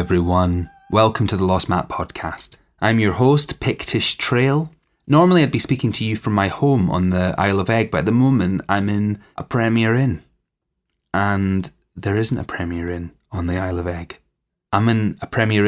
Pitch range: 90-115 Hz